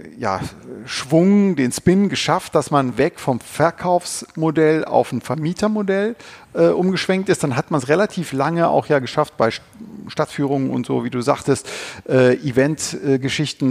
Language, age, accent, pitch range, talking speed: German, 40-59, German, 125-165 Hz, 145 wpm